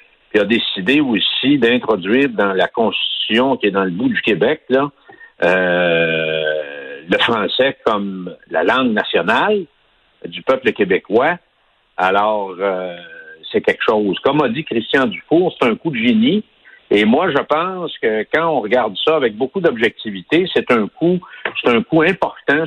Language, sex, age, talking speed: French, male, 60-79, 160 wpm